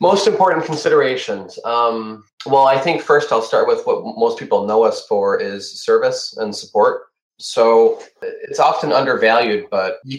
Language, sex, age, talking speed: English, male, 30-49, 160 wpm